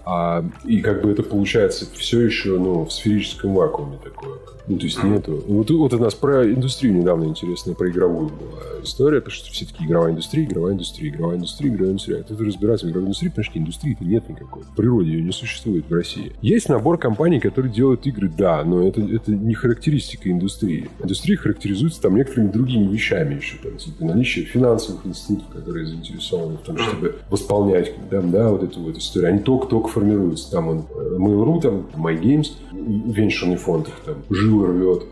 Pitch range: 95-120 Hz